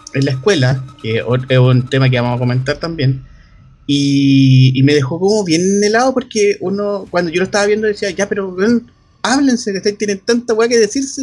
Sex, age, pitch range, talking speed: male, 30-49, 140-190 Hz, 185 wpm